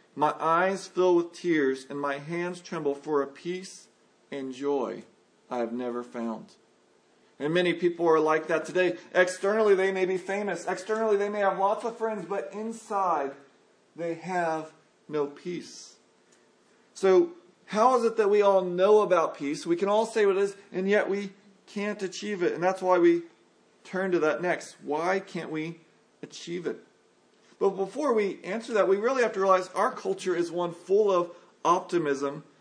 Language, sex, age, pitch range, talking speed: English, male, 40-59, 165-205 Hz, 175 wpm